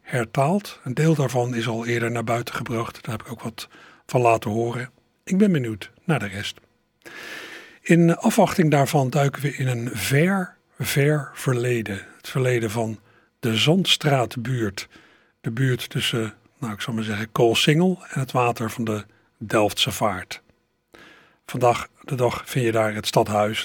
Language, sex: Dutch, male